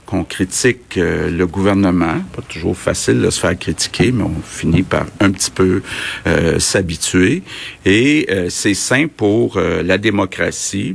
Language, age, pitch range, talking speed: French, 50-69, 90-110 Hz, 160 wpm